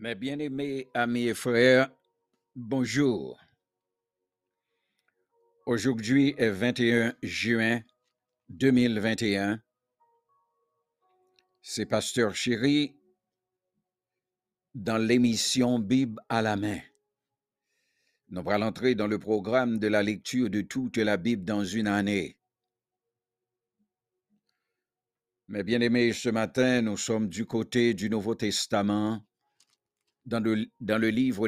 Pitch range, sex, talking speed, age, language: 100-125 Hz, male, 100 wpm, 60-79, English